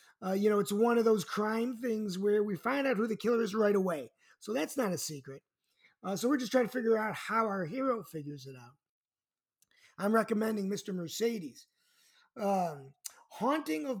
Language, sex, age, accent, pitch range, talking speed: English, male, 30-49, American, 180-245 Hz, 195 wpm